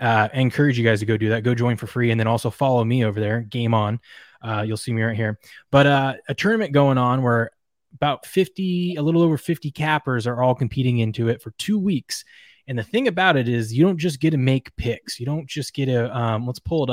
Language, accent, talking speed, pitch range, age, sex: English, American, 255 wpm, 120-155 Hz, 20-39, male